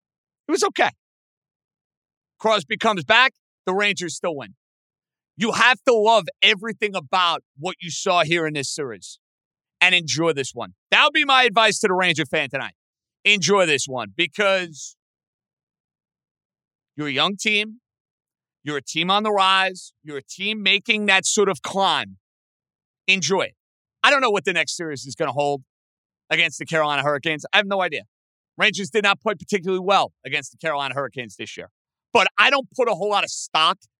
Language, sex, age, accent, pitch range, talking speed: English, male, 40-59, American, 150-205 Hz, 180 wpm